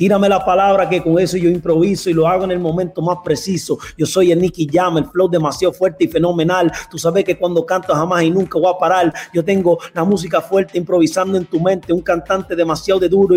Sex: male